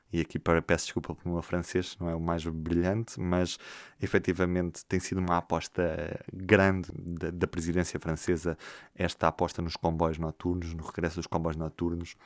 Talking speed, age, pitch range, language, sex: 160 wpm, 20-39, 85-100 Hz, Portuguese, male